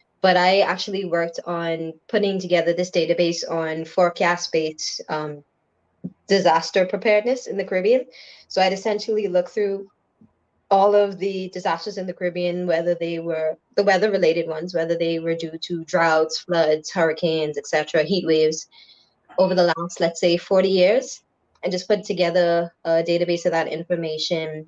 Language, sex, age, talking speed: English, female, 20-39, 155 wpm